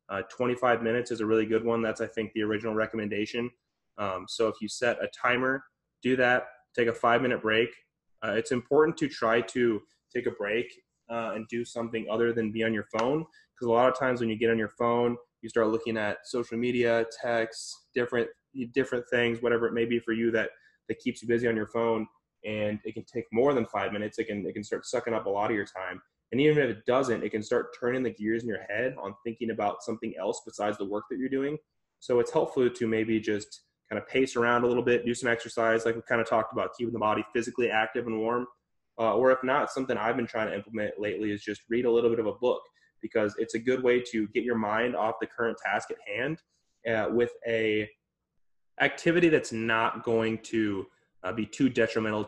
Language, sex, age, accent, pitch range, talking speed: English, male, 20-39, American, 110-120 Hz, 235 wpm